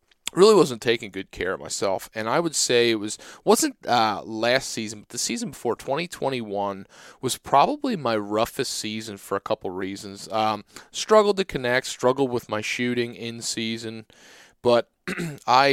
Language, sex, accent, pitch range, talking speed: English, male, American, 105-130 Hz, 170 wpm